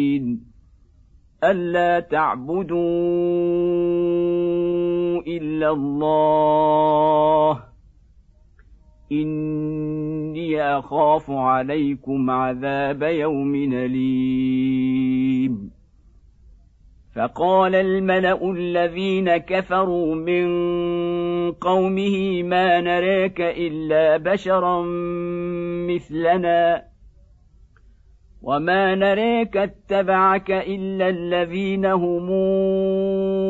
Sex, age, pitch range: male, 50-69, 140-190 Hz